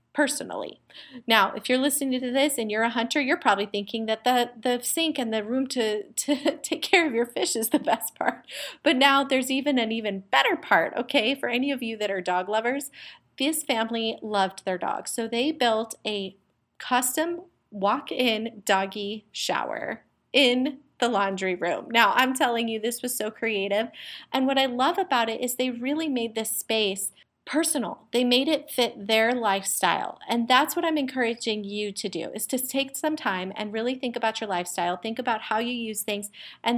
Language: English